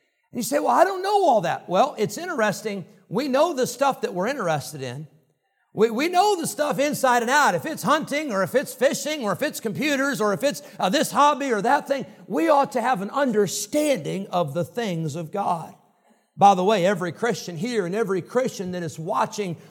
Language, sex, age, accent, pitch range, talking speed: English, male, 50-69, American, 185-250 Hz, 215 wpm